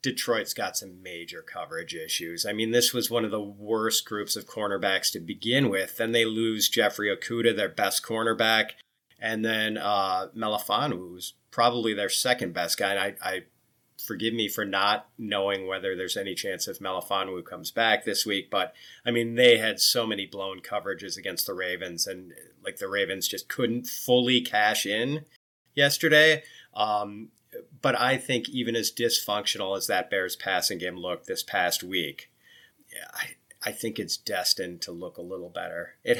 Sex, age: male, 30-49